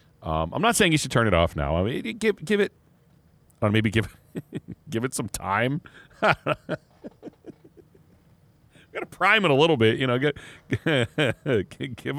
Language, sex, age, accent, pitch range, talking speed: English, male, 40-59, American, 105-145 Hz, 160 wpm